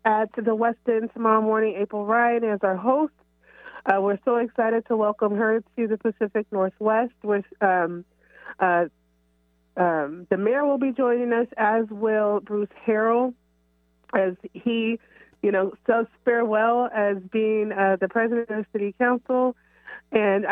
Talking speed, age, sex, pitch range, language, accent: 150 wpm, 30-49, female, 185-225 Hz, English, American